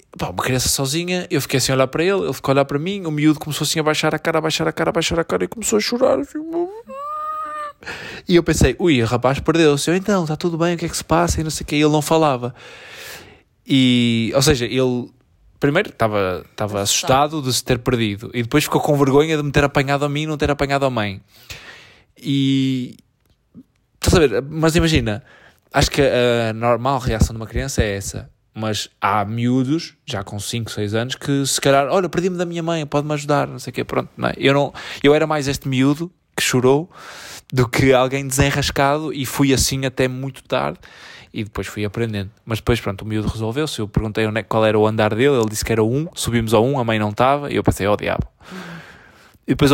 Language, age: Portuguese, 20-39